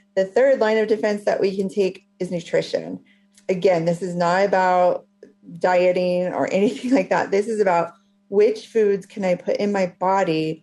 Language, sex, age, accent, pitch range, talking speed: English, female, 30-49, American, 170-200 Hz, 180 wpm